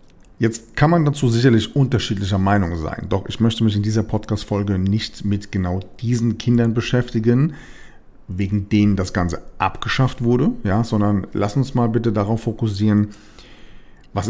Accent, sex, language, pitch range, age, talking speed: German, male, German, 95-115 Hz, 50-69, 145 wpm